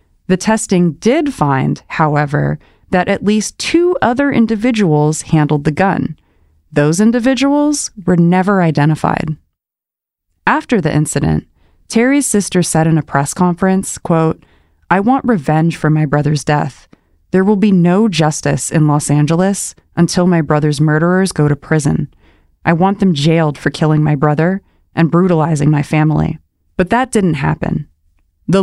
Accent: American